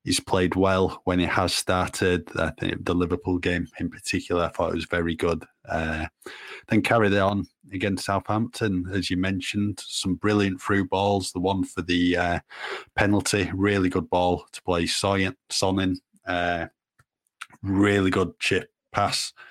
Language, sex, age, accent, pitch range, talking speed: English, male, 20-39, British, 90-95 Hz, 155 wpm